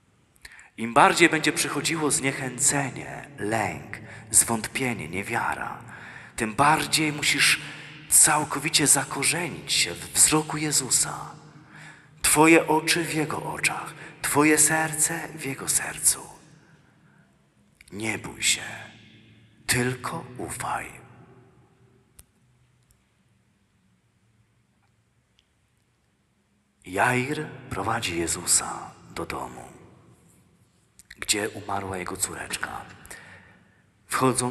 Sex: male